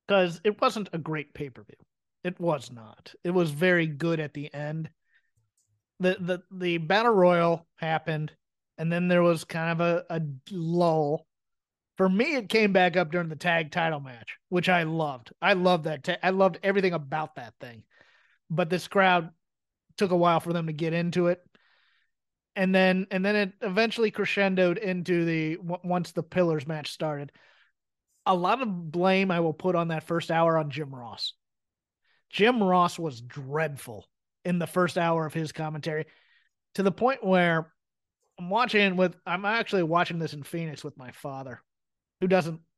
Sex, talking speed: male, 175 wpm